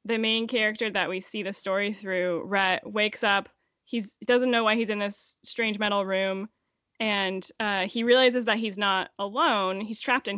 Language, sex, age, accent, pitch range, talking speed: English, female, 10-29, American, 190-225 Hz, 190 wpm